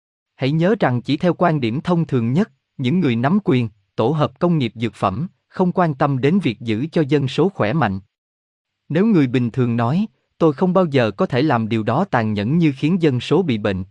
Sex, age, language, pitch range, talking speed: male, 20-39, Vietnamese, 115-165 Hz, 230 wpm